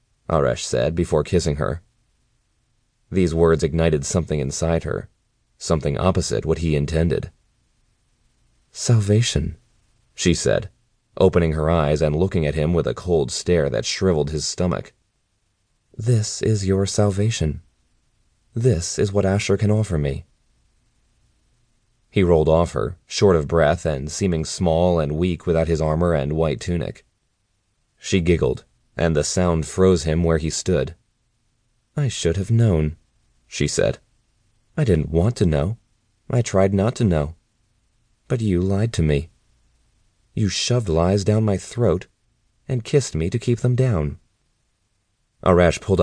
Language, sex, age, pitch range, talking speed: English, male, 30-49, 80-110 Hz, 140 wpm